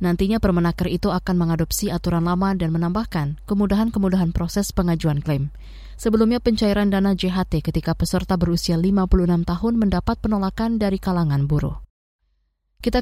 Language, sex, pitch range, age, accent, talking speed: Indonesian, female, 160-200 Hz, 20-39, native, 130 wpm